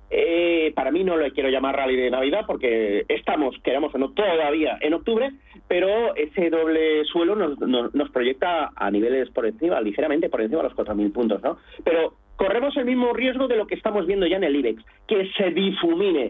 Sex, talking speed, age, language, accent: male, 200 wpm, 40-59, Spanish, Spanish